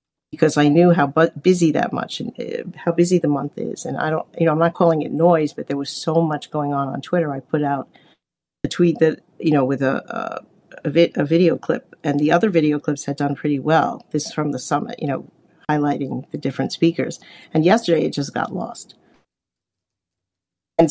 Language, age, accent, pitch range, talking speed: English, 50-69, American, 145-165 Hz, 220 wpm